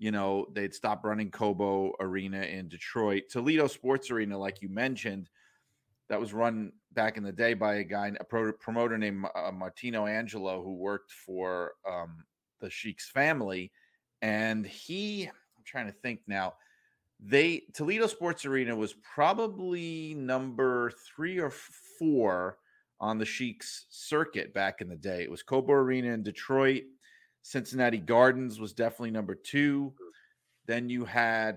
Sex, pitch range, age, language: male, 105-135 Hz, 30-49, English